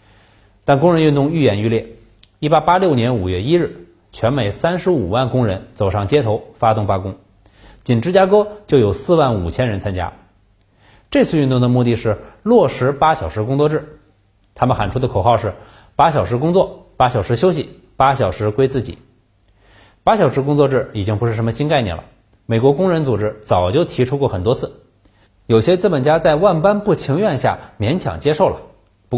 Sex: male